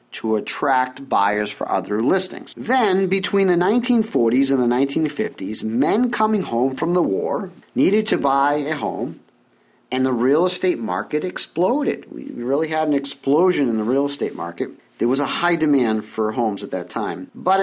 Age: 40-59